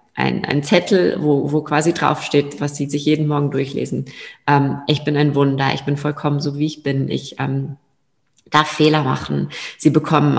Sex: female